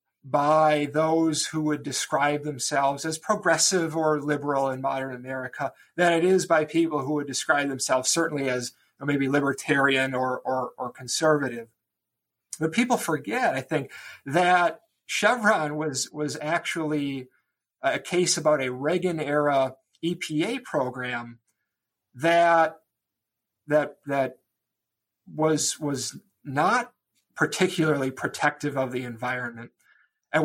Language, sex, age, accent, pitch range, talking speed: English, male, 50-69, American, 135-165 Hz, 120 wpm